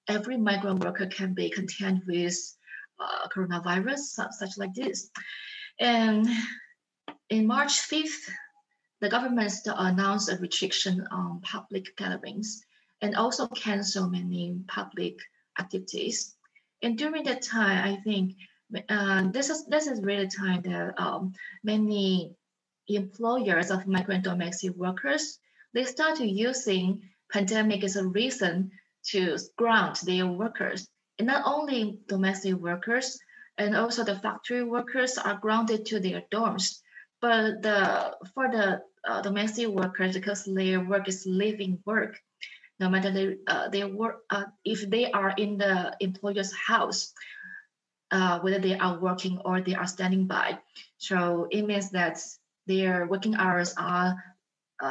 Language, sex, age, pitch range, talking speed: English, female, 20-39, 185-225 Hz, 135 wpm